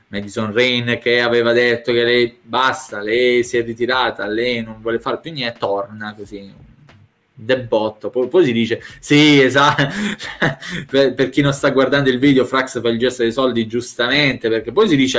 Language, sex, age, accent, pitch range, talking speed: Italian, male, 20-39, native, 110-145 Hz, 185 wpm